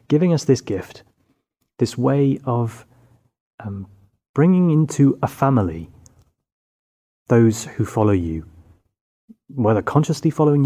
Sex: male